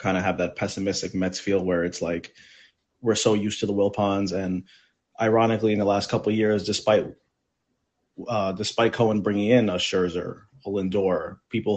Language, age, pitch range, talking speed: English, 30-49, 100-130 Hz, 180 wpm